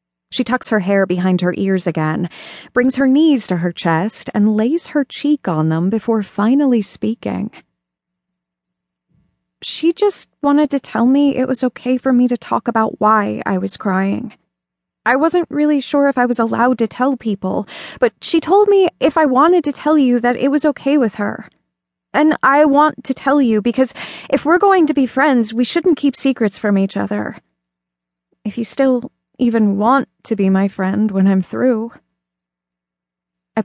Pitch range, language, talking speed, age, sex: 180-275 Hz, English, 180 wpm, 20-39, female